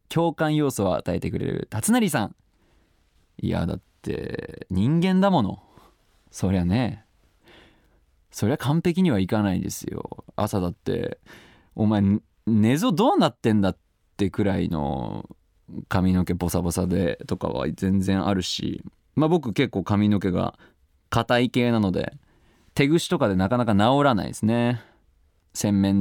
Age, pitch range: 20-39, 90-125 Hz